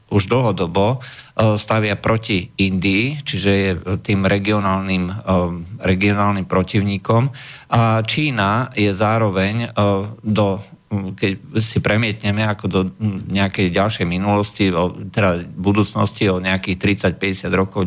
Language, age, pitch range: Slovak, 50-69, 100-120 Hz